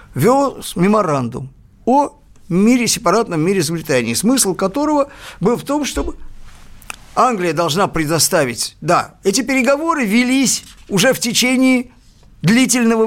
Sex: male